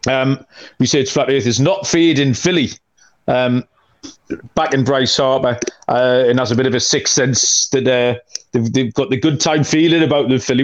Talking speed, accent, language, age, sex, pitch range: 195 wpm, British, English, 40-59, male, 125-150 Hz